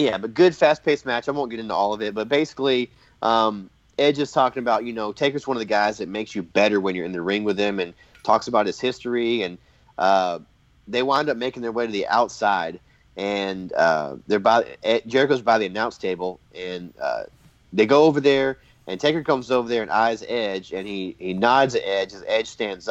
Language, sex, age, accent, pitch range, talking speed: English, male, 30-49, American, 105-135 Hz, 225 wpm